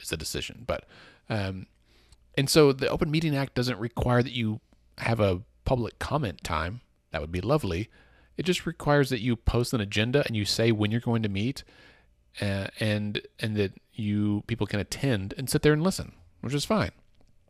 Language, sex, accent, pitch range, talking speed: English, male, American, 95-125 Hz, 190 wpm